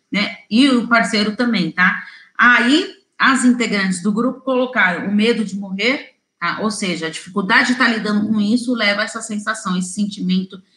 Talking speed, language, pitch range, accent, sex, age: 180 wpm, Portuguese, 195-245 Hz, Brazilian, female, 40-59